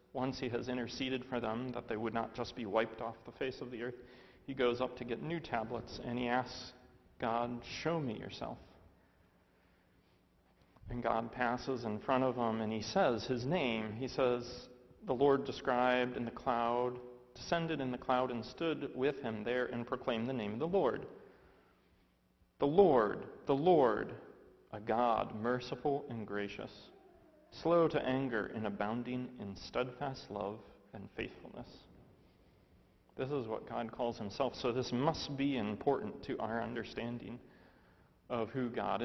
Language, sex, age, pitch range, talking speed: English, male, 40-59, 110-125 Hz, 160 wpm